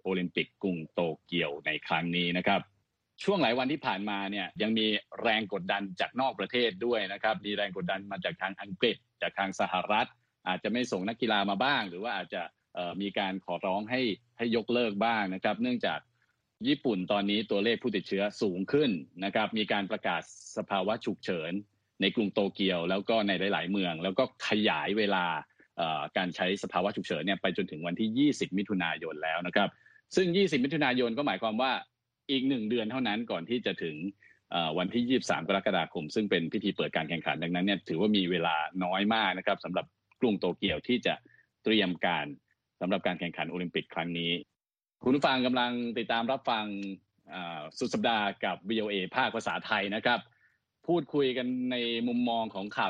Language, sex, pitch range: Thai, male, 95-120 Hz